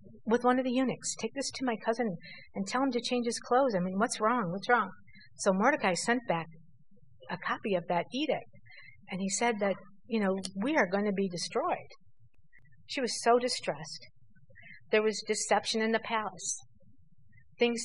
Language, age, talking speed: English, 50-69, 185 wpm